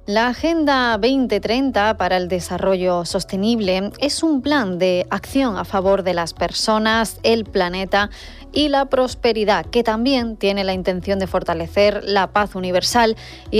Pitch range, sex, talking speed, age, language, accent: 185-230 Hz, female, 145 wpm, 20-39, Spanish, Spanish